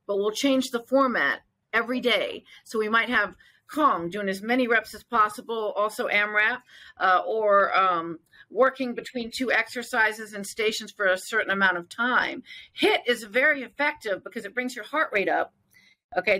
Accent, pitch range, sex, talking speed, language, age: American, 200-265 Hz, female, 170 wpm, English, 40-59